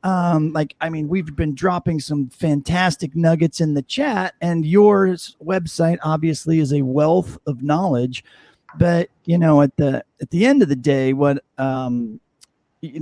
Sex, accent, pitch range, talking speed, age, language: male, American, 140-185 Hz, 165 wpm, 40-59, English